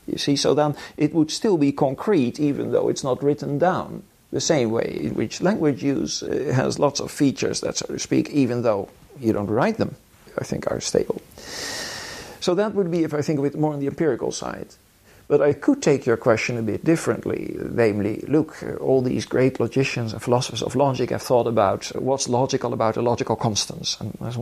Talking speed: 205 wpm